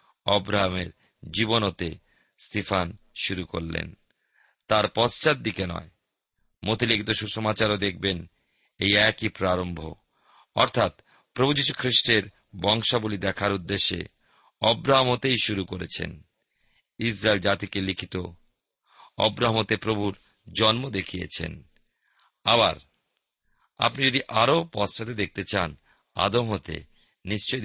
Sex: male